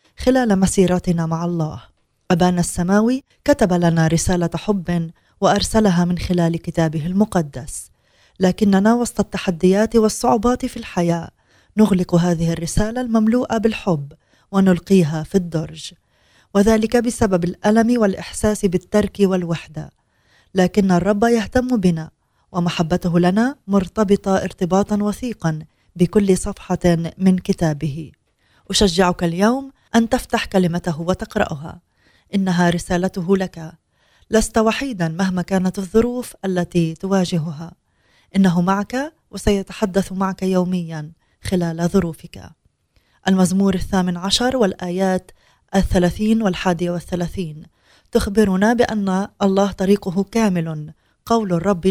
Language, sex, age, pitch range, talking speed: Arabic, female, 20-39, 175-210 Hz, 100 wpm